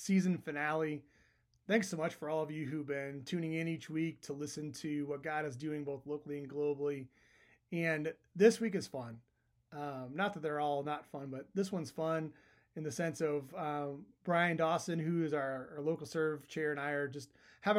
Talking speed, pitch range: 205 wpm, 140-165 Hz